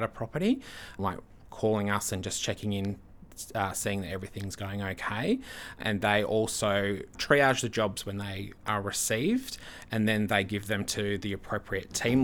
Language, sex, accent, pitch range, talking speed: English, male, Australian, 100-115 Hz, 165 wpm